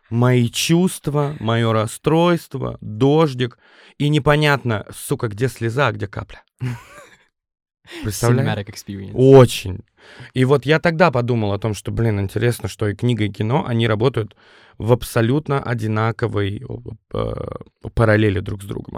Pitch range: 105-130 Hz